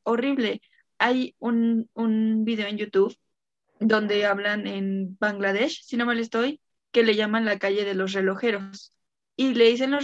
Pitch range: 200-235 Hz